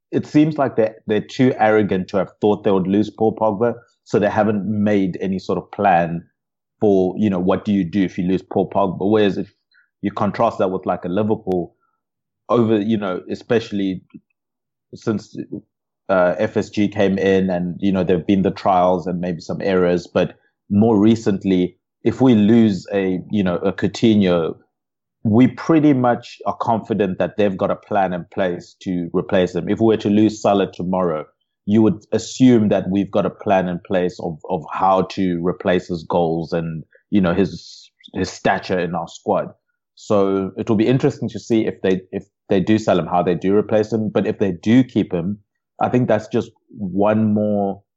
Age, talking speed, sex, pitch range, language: 30-49, 190 wpm, male, 95-110 Hz, English